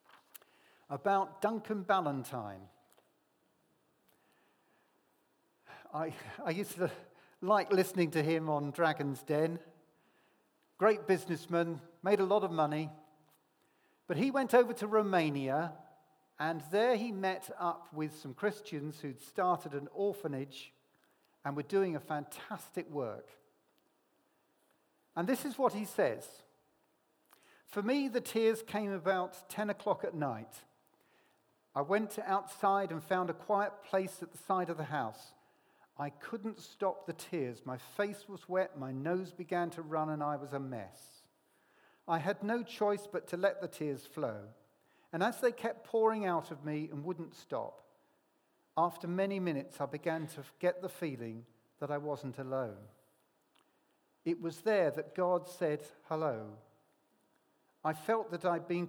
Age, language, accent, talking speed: 50-69, English, British, 145 wpm